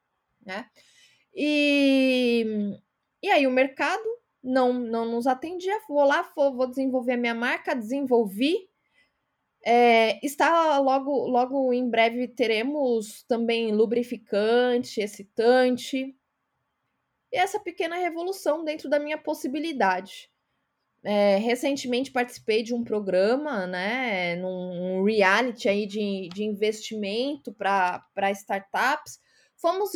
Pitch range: 215-280 Hz